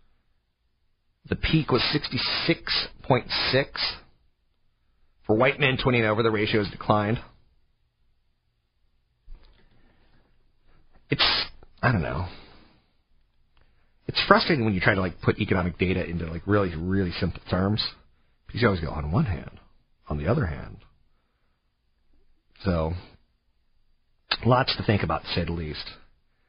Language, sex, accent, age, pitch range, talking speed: English, male, American, 40-59, 80-110 Hz, 120 wpm